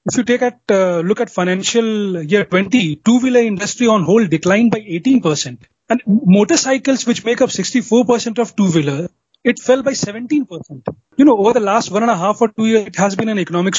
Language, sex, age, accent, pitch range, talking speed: English, male, 30-49, Indian, 185-235 Hz, 200 wpm